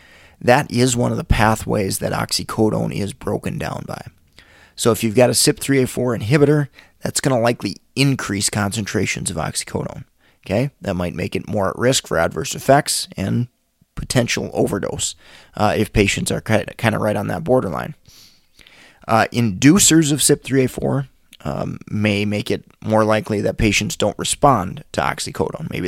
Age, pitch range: 30-49, 105-130 Hz